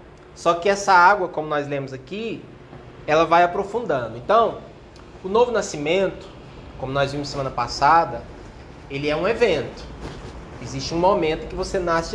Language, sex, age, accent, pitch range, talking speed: Portuguese, male, 20-39, Brazilian, 145-195 Hz, 150 wpm